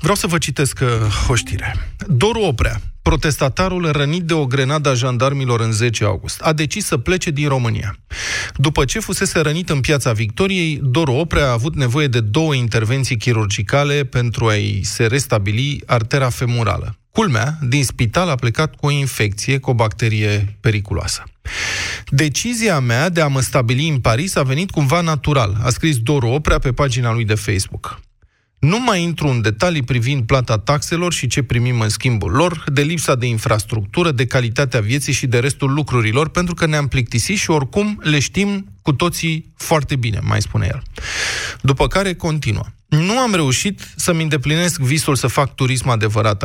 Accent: native